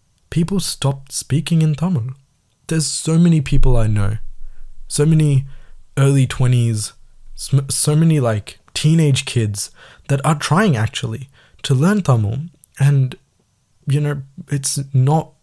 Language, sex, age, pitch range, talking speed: Tamil, male, 20-39, 110-145 Hz, 125 wpm